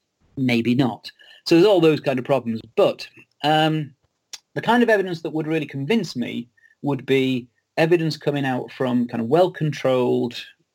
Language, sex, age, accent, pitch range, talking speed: English, male, 40-59, British, 120-150 Hz, 160 wpm